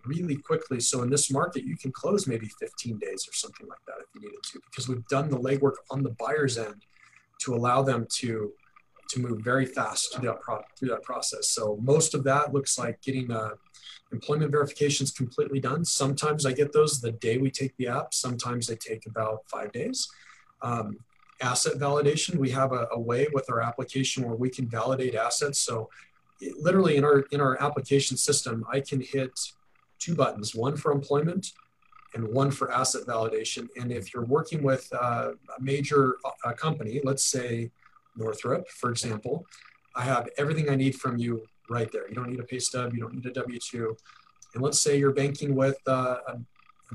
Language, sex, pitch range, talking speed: English, male, 120-145 Hz, 185 wpm